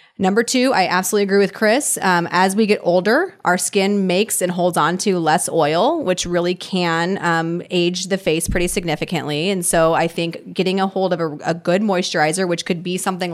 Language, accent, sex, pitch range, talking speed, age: English, American, female, 165-190 Hz, 205 wpm, 30-49